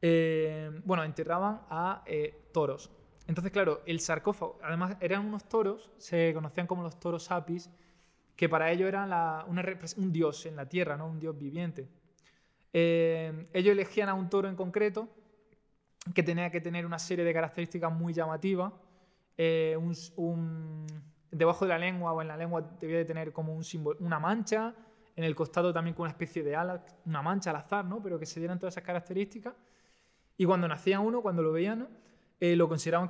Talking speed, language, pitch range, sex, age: 190 wpm, Spanish, 160-190 Hz, male, 20-39